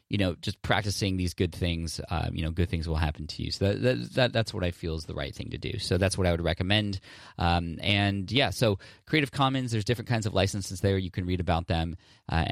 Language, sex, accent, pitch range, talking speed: English, male, American, 85-105 Hz, 260 wpm